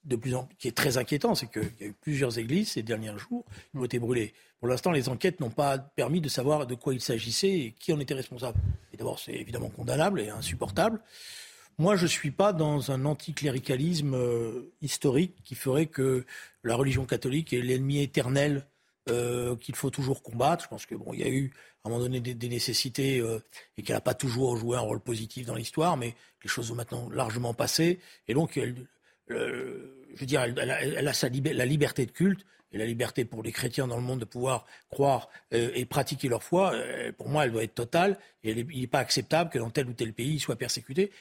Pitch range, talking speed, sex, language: 120-155 Hz, 225 wpm, male, French